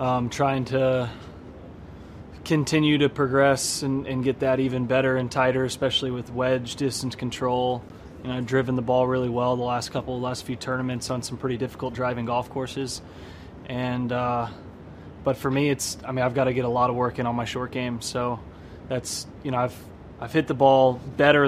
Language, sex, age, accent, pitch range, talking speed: English, male, 20-39, American, 120-135 Hz, 200 wpm